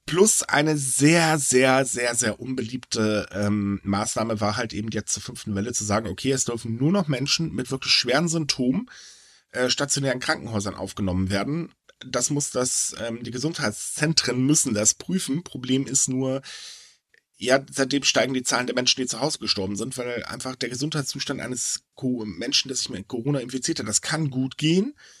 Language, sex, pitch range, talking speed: German, male, 110-145 Hz, 175 wpm